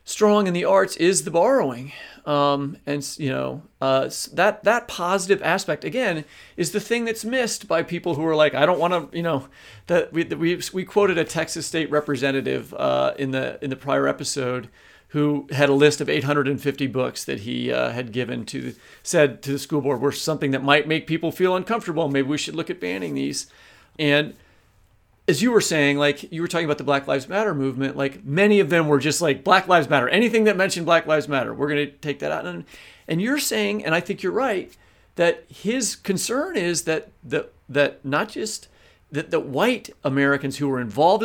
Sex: male